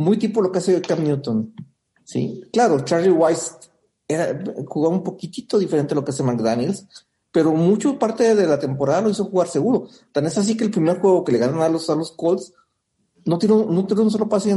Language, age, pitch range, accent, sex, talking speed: Spanish, 50-69, 140-190 Hz, Mexican, male, 225 wpm